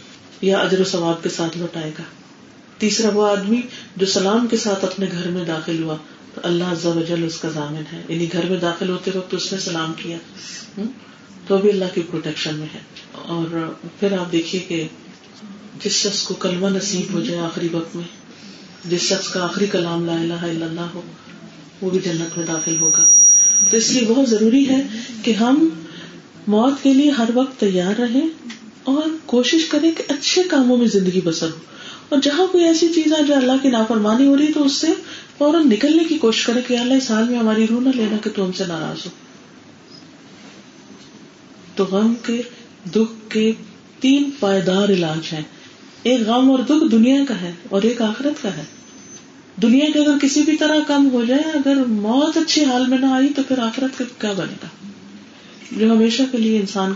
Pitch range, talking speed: 180-260 Hz, 190 wpm